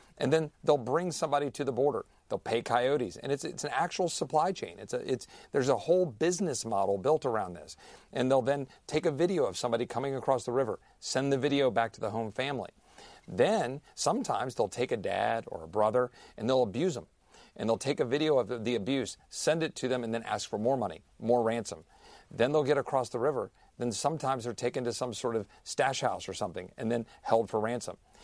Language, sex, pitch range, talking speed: English, male, 120-150 Hz, 225 wpm